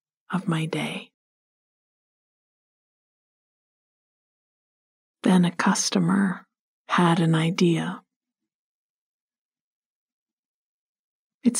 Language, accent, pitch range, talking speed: English, American, 170-215 Hz, 50 wpm